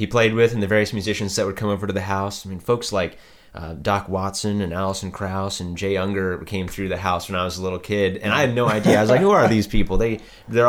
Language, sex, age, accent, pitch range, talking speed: English, male, 30-49, American, 90-105 Hz, 285 wpm